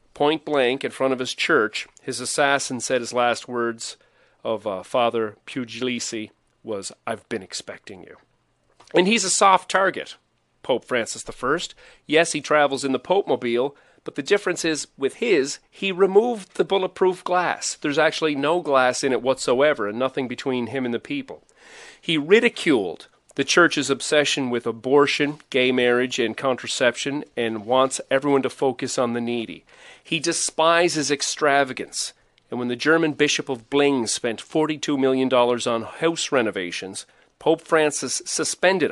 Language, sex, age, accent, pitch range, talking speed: English, male, 40-59, American, 125-170 Hz, 155 wpm